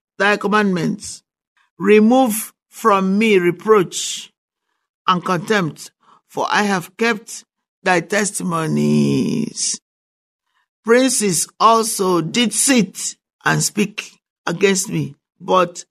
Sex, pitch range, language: male, 175-215 Hz, English